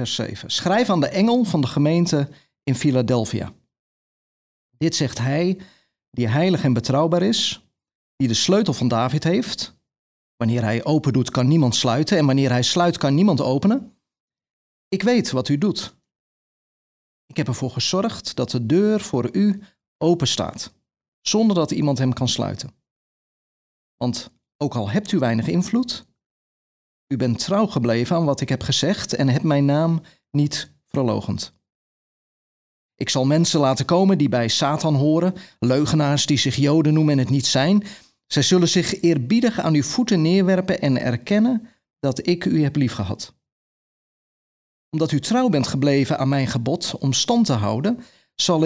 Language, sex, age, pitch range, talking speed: Dutch, male, 30-49, 130-175 Hz, 160 wpm